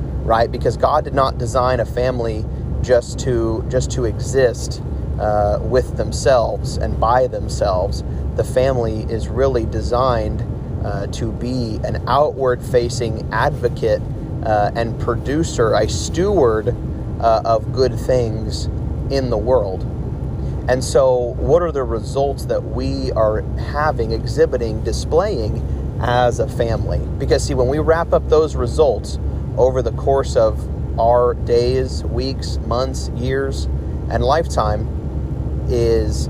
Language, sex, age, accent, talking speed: English, male, 30-49, American, 125 wpm